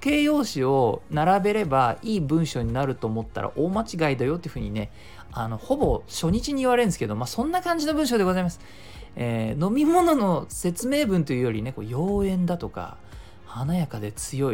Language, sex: Japanese, male